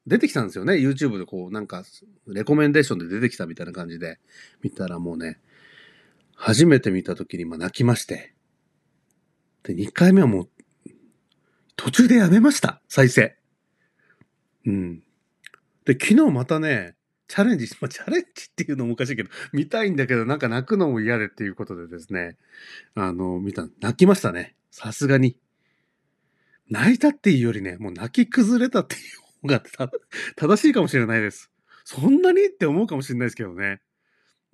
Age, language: 40-59, Japanese